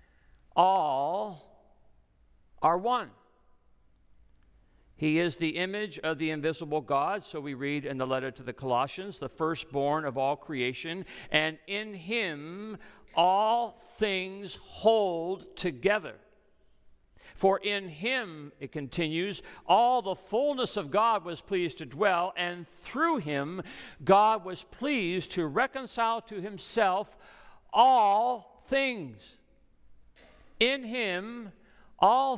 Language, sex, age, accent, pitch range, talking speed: English, male, 60-79, American, 165-230 Hz, 115 wpm